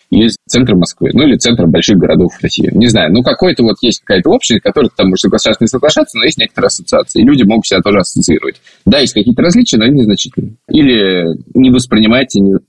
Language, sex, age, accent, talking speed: Russian, male, 20-39, native, 210 wpm